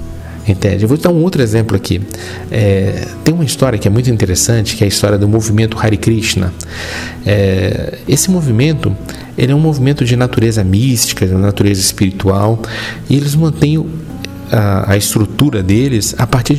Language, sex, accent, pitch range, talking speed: Portuguese, male, Brazilian, 95-130 Hz, 165 wpm